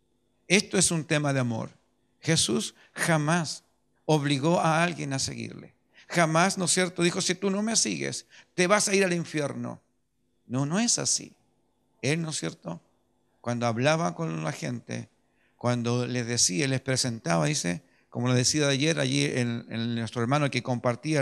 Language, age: Spanish, 50-69